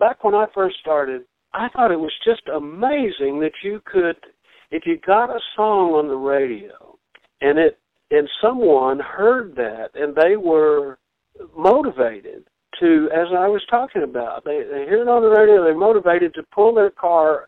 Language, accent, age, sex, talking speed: English, American, 60-79, male, 175 wpm